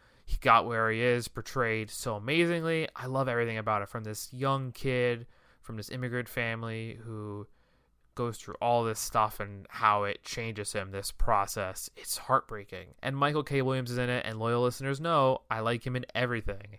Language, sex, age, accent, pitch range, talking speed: English, male, 20-39, American, 110-140 Hz, 185 wpm